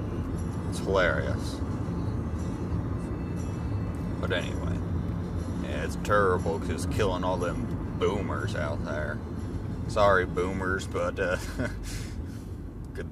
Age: 30-49